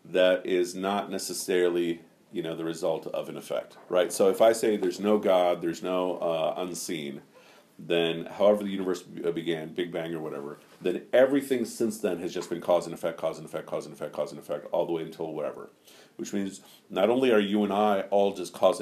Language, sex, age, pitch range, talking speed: English, male, 50-69, 85-105 Hz, 215 wpm